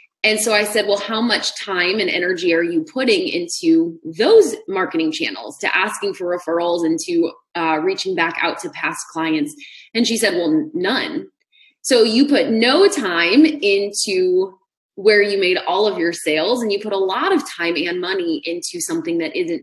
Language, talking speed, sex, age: English, 185 wpm, female, 20-39